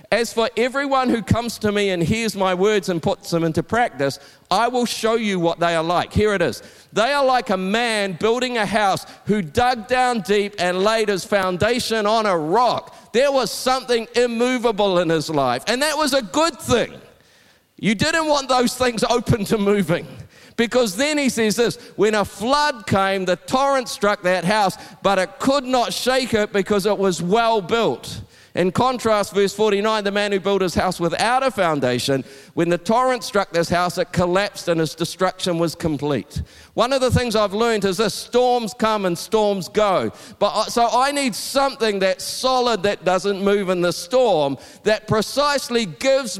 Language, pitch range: English, 185-240 Hz